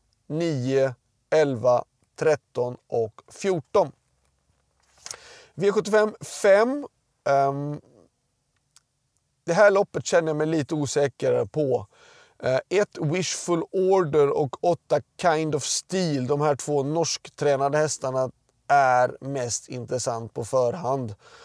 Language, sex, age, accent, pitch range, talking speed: Swedish, male, 30-49, native, 130-165 Hz, 90 wpm